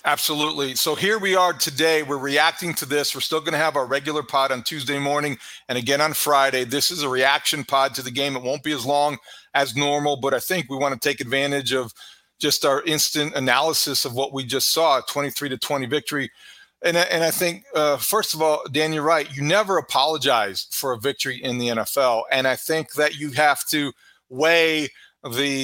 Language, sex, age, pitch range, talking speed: English, male, 40-59, 145-185 Hz, 215 wpm